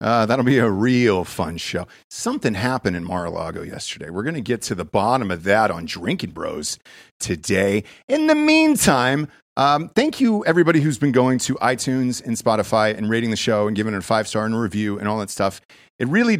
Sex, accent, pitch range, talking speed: male, American, 100-130 Hz, 210 wpm